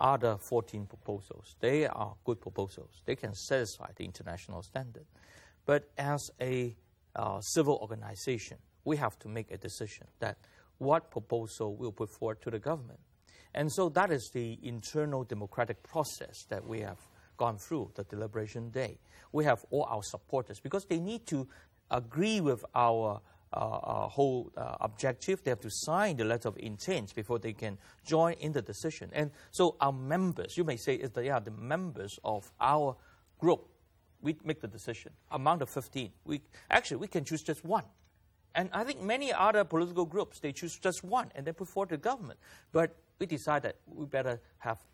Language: English